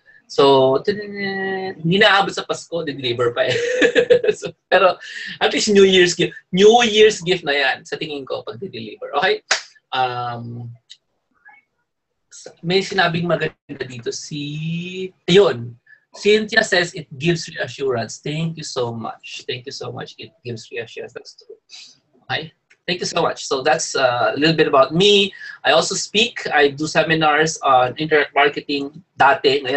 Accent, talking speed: Filipino, 145 wpm